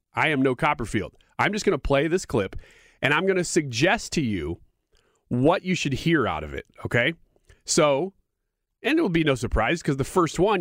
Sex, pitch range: male, 110-170 Hz